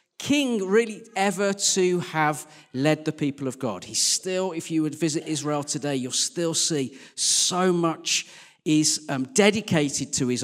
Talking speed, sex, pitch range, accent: 160 wpm, male, 130-195 Hz, British